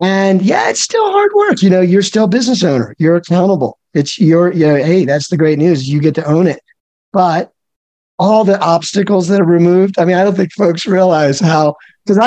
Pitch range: 155-195 Hz